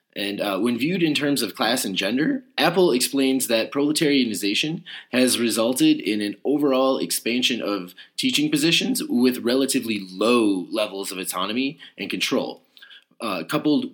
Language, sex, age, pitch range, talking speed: English, male, 30-49, 105-150 Hz, 140 wpm